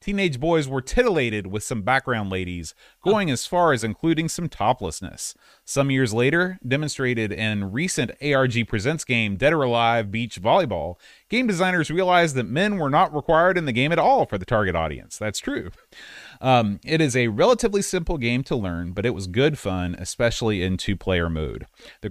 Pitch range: 105-160 Hz